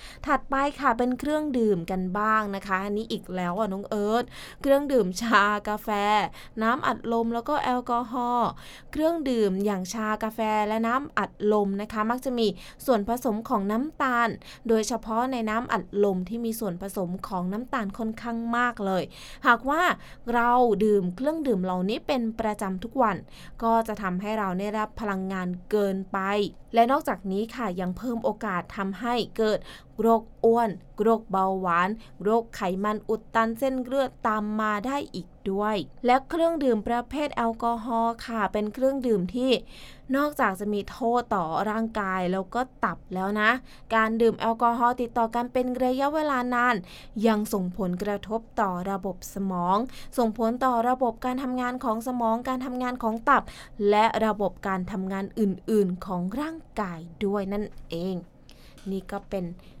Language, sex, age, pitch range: English, female, 20-39, 200-245 Hz